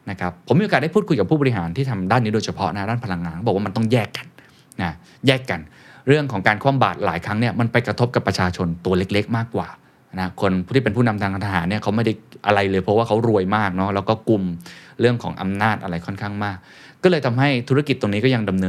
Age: 20-39